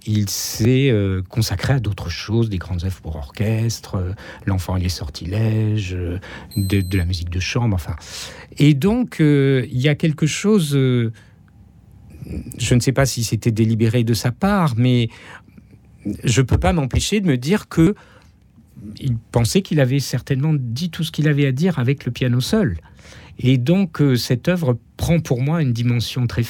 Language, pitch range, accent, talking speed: French, 105-140 Hz, French, 185 wpm